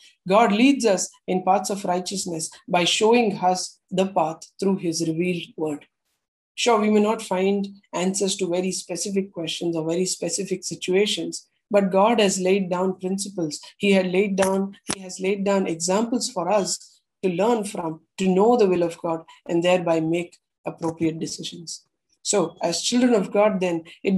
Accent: Indian